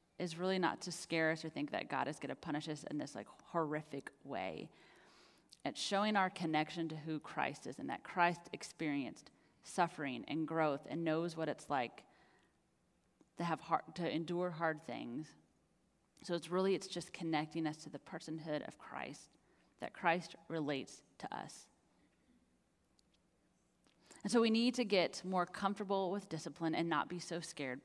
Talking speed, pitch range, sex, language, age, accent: 170 wpm, 160-195 Hz, female, English, 30-49, American